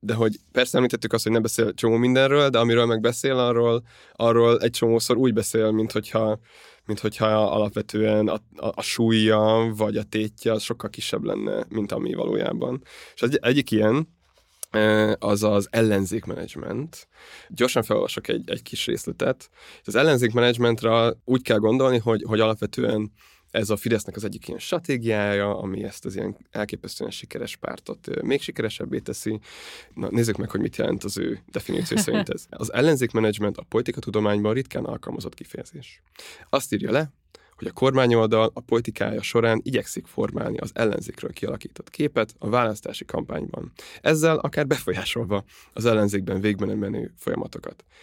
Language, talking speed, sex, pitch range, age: Hungarian, 150 wpm, male, 105-120 Hz, 20-39